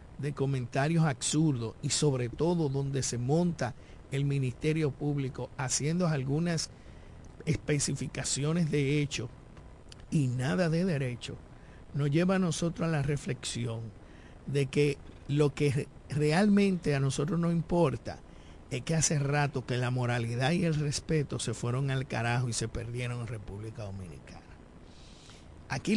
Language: Spanish